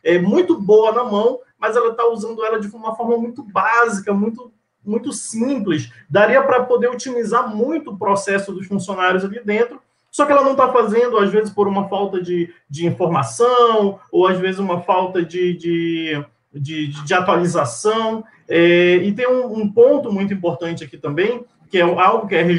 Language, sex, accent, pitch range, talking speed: Portuguese, male, Brazilian, 175-230 Hz, 180 wpm